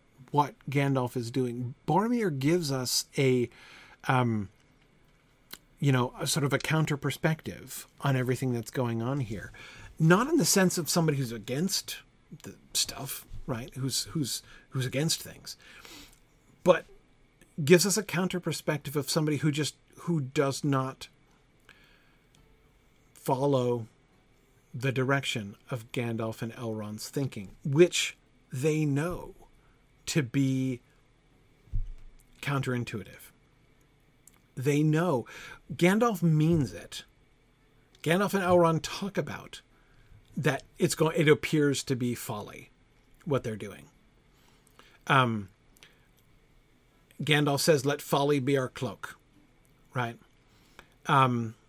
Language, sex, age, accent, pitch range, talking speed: English, male, 40-59, American, 125-155 Hz, 110 wpm